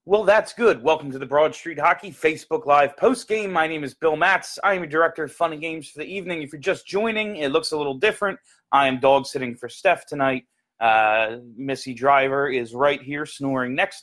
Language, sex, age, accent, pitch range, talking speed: English, male, 30-49, American, 125-175 Hz, 225 wpm